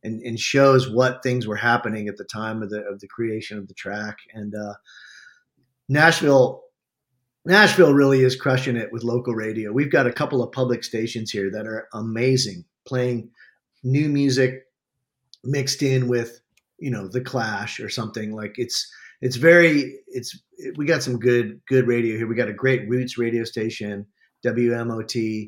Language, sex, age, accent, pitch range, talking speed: English, male, 40-59, American, 110-130 Hz, 170 wpm